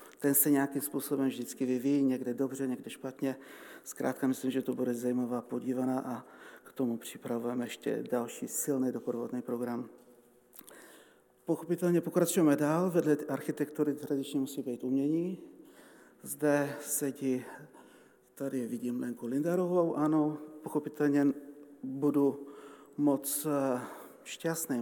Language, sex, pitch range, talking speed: Czech, male, 125-145 Hz, 110 wpm